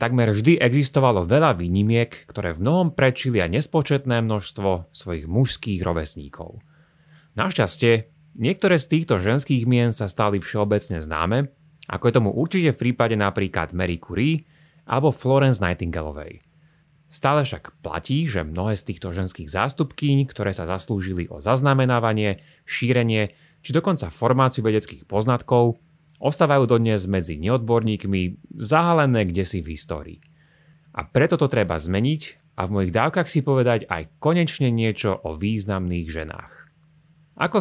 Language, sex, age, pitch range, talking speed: Slovak, male, 30-49, 100-150 Hz, 130 wpm